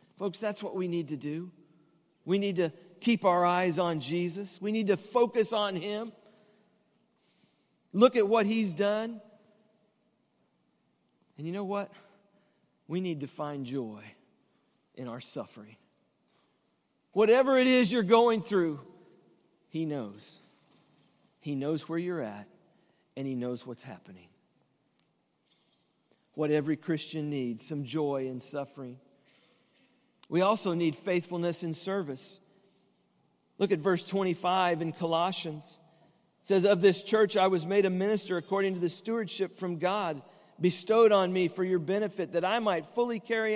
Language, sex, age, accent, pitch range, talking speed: English, male, 50-69, American, 165-215 Hz, 140 wpm